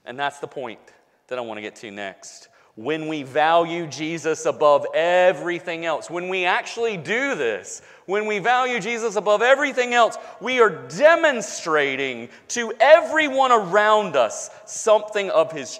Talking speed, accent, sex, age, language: 150 wpm, American, male, 40-59, English